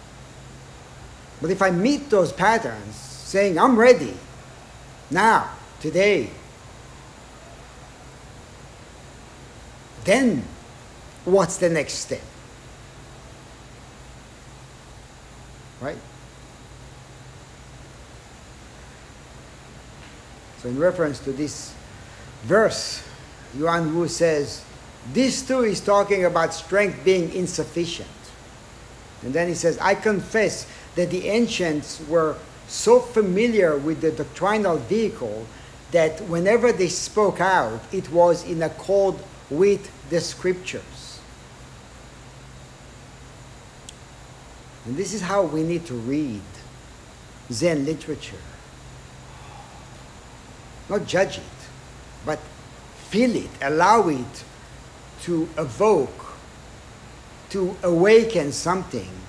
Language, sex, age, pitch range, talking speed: English, male, 60-79, 135-195 Hz, 85 wpm